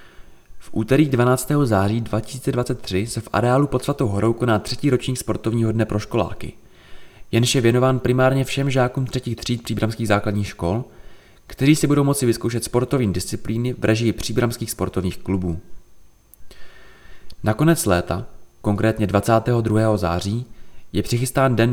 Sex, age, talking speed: male, 20-39, 135 wpm